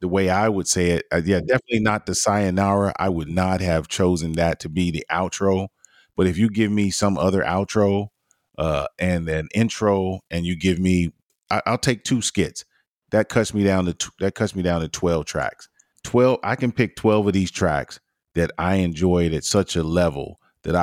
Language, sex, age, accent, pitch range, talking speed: English, male, 30-49, American, 85-100 Hz, 205 wpm